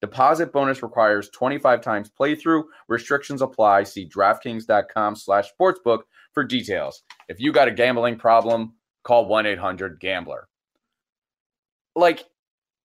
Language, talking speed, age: English, 100 wpm, 30-49